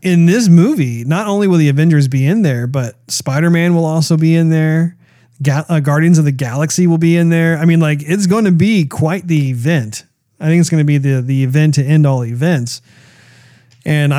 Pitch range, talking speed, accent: 130-160 Hz, 225 wpm, American